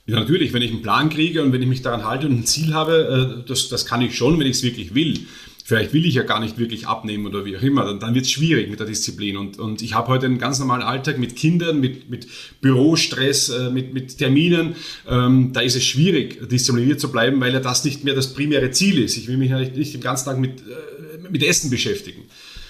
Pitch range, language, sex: 130-165 Hz, German, male